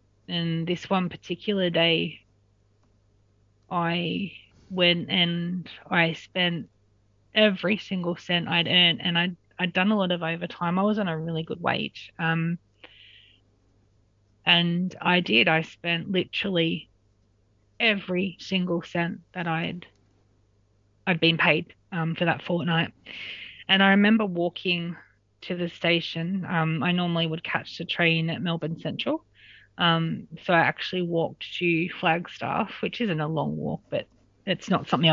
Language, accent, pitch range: English, Australian, 155-175 Hz